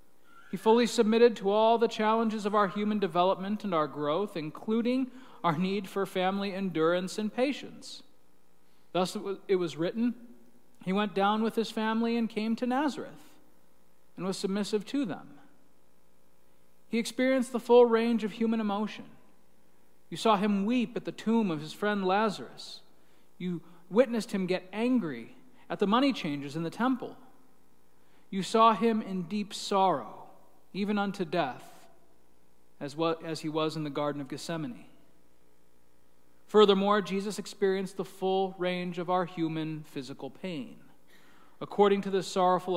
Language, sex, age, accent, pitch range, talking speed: English, male, 40-59, American, 150-215 Hz, 145 wpm